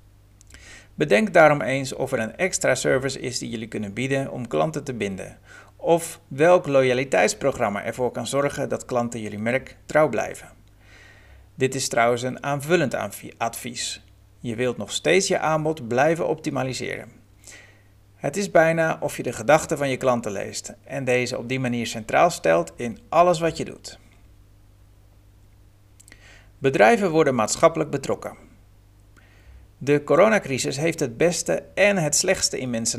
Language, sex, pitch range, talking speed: Dutch, male, 100-145 Hz, 145 wpm